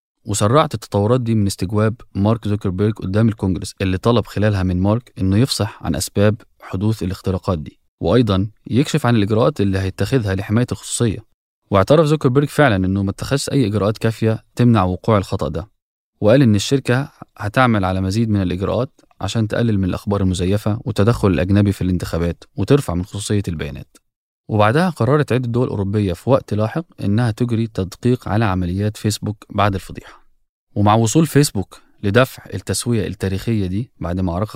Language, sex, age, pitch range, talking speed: Arabic, male, 20-39, 95-120 Hz, 155 wpm